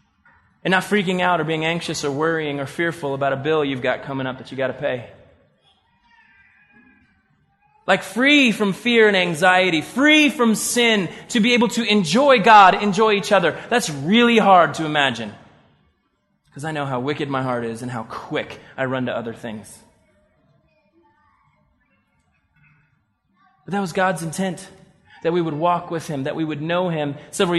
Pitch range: 140-190 Hz